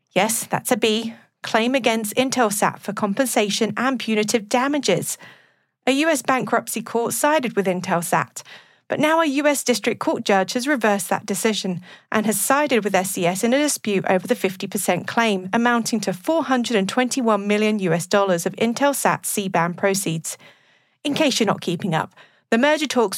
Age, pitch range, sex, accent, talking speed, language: 40-59, 195-255 Hz, female, British, 160 wpm, English